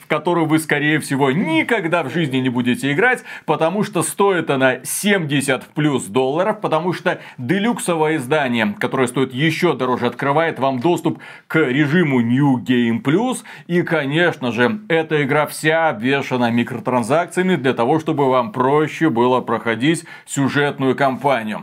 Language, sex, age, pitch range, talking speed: Russian, male, 30-49, 130-165 Hz, 140 wpm